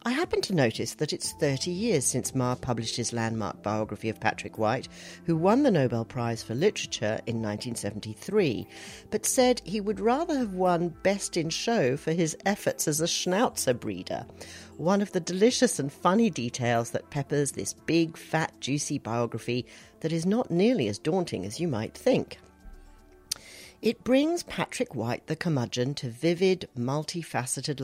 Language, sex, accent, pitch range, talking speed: English, female, British, 120-190 Hz, 165 wpm